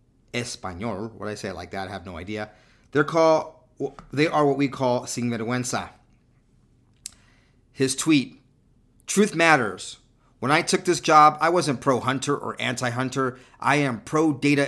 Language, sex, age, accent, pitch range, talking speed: English, male, 40-59, American, 115-140 Hz, 155 wpm